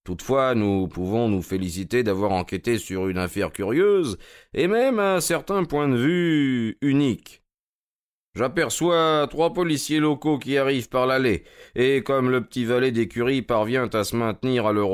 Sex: male